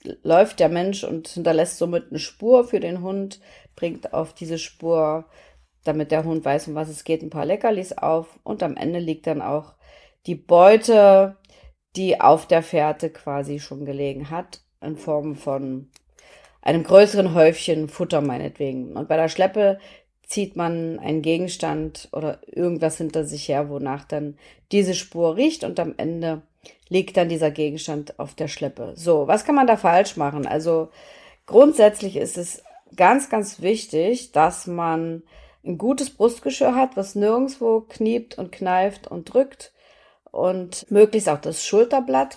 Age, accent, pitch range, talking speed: 40-59, German, 160-210 Hz, 155 wpm